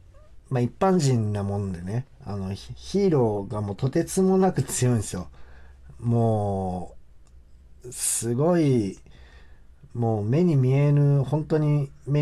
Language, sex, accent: Japanese, male, native